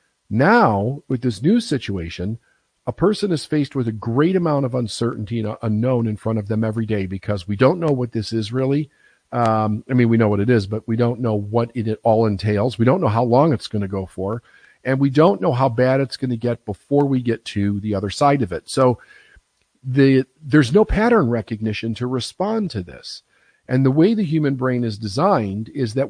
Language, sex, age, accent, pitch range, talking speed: English, male, 50-69, American, 110-140 Hz, 220 wpm